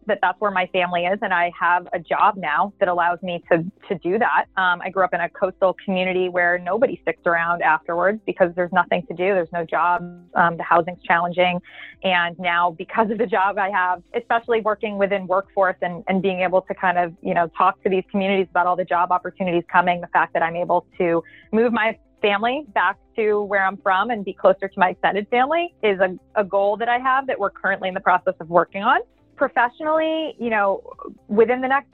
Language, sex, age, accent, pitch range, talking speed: English, female, 20-39, American, 180-210 Hz, 220 wpm